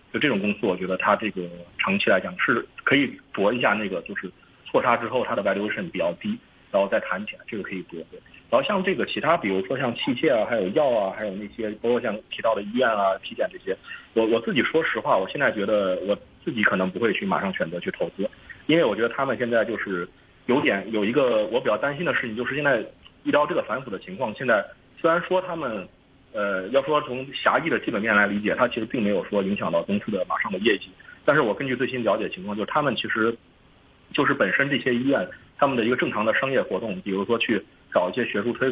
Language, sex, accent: Chinese, male, native